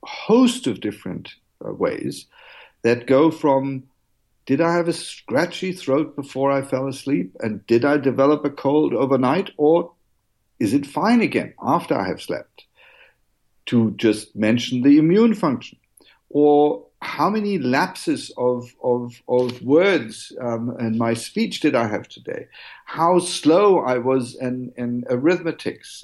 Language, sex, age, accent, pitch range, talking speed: English, male, 50-69, German, 125-165 Hz, 145 wpm